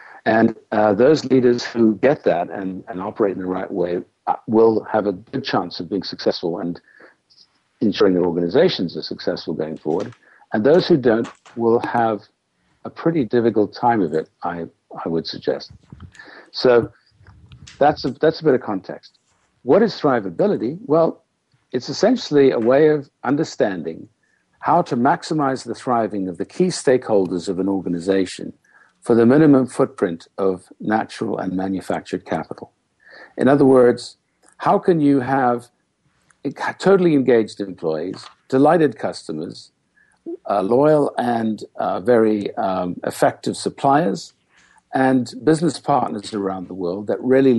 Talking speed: 140 wpm